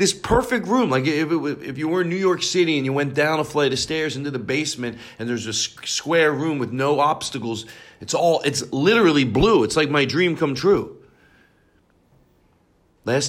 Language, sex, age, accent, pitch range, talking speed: English, male, 40-59, American, 110-160 Hz, 205 wpm